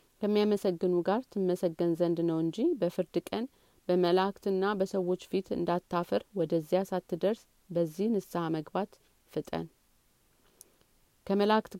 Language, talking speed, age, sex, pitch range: Amharic, 95 wpm, 40-59, female, 170-195 Hz